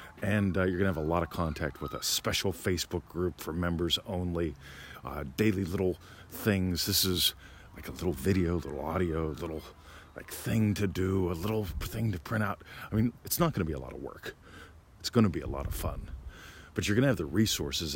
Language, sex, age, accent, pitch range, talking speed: English, male, 40-59, American, 85-115 Hz, 230 wpm